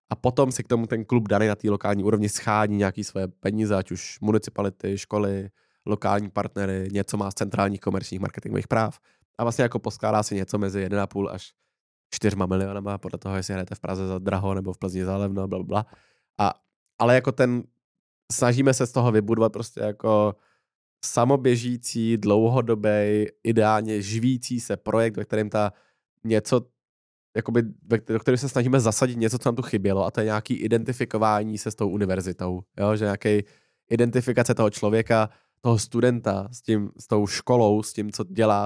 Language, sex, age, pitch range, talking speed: Czech, male, 20-39, 100-115 Hz, 175 wpm